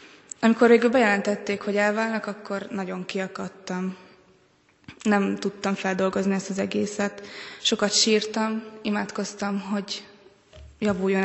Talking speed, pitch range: 100 wpm, 190-210 Hz